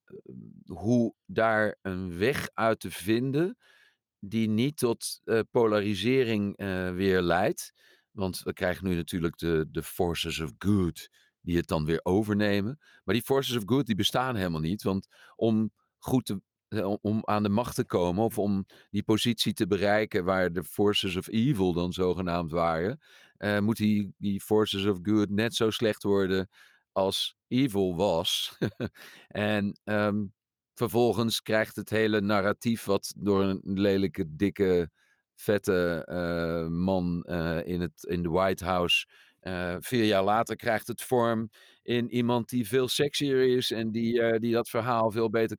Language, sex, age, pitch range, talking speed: Dutch, male, 50-69, 95-120 Hz, 155 wpm